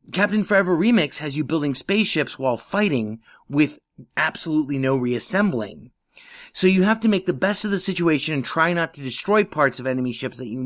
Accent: American